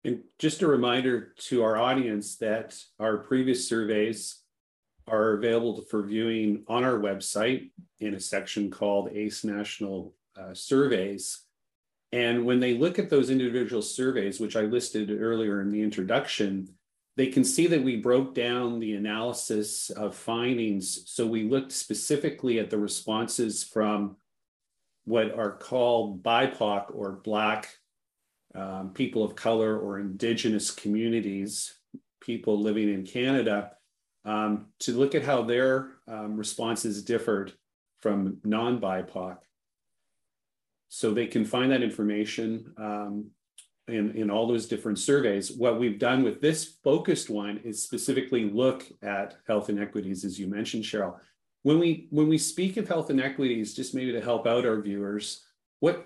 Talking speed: 145 wpm